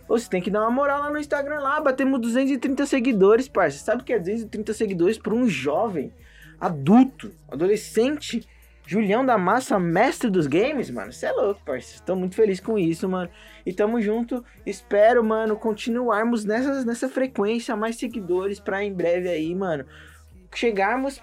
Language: Portuguese